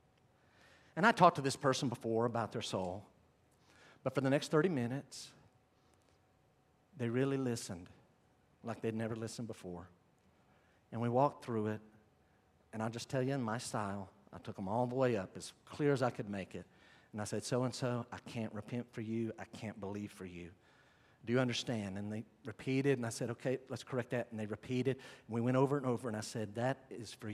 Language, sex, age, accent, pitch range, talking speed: English, male, 50-69, American, 110-145 Hz, 210 wpm